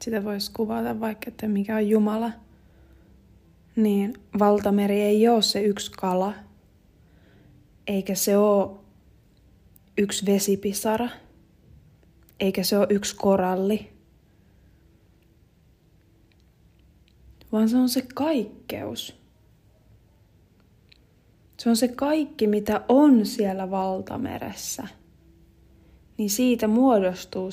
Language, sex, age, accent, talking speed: Finnish, female, 20-39, native, 90 wpm